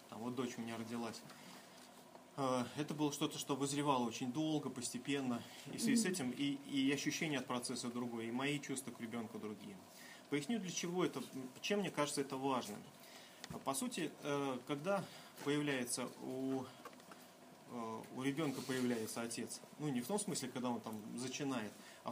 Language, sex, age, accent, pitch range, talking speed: Russian, male, 30-49, native, 125-155 Hz, 160 wpm